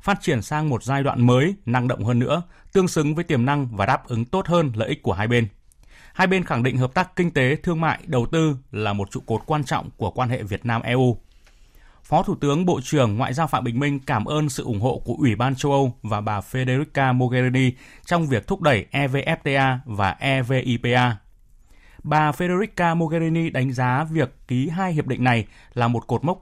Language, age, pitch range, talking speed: Vietnamese, 20-39, 115-150 Hz, 215 wpm